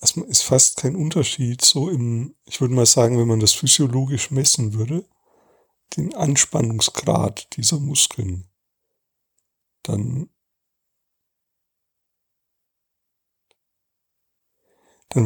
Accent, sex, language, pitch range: German, male, German, 120-155 Hz